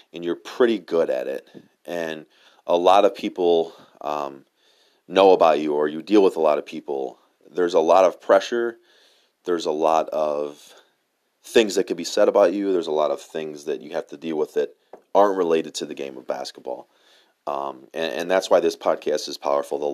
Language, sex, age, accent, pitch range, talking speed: English, male, 30-49, American, 75-85 Hz, 205 wpm